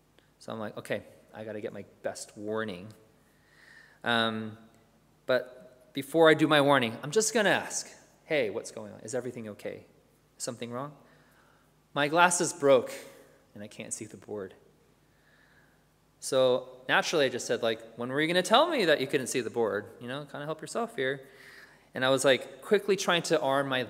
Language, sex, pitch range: English, male, 125-185 Hz